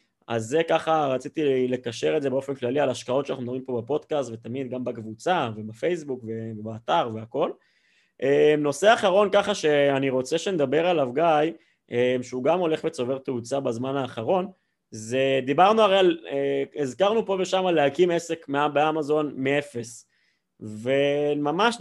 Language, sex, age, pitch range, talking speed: Hebrew, male, 20-39, 130-160 Hz, 135 wpm